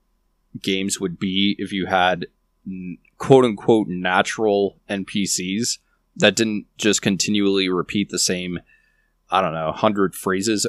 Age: 20-39